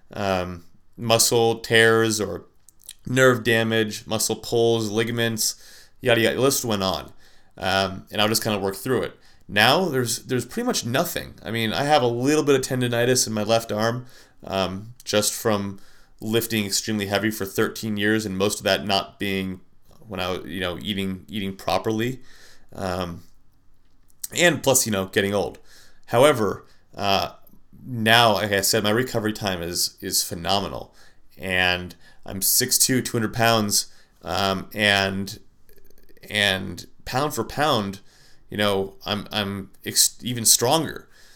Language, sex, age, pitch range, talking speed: English, male, 30-49, 95-120 Hz, 150 wpm